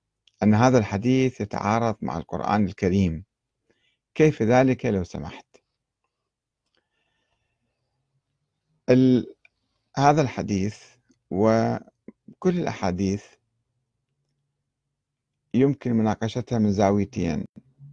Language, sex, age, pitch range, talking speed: Arabic, male, 50-69, 100-130 Hz, 65 wpm